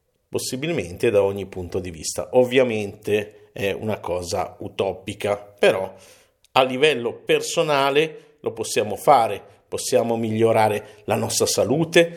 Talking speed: 115 wpm